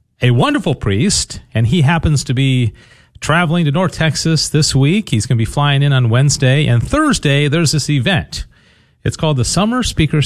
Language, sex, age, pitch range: English, male, 40-59, 120-155 Hz